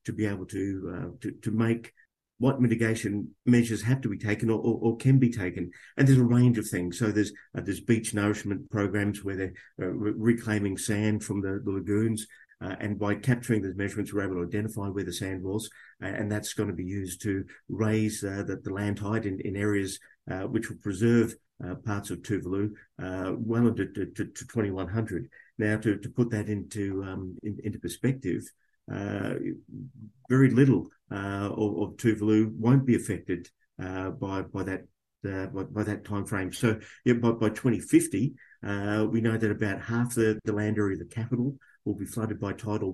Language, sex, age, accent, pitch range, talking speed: English, male, 50-69, Australian, 95-115 Hz, 195 wpm